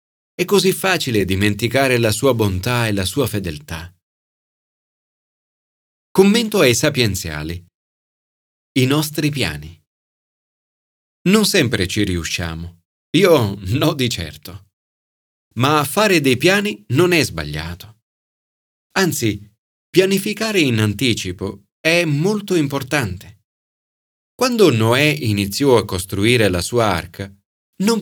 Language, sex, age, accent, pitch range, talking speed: Italian, male, 40-59, native, 95-155 Hz, 105 wpm